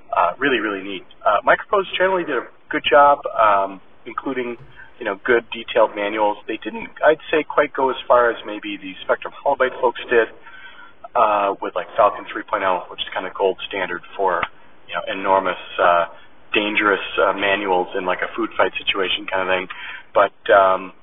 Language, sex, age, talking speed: English, male, 40-59, 180 wpm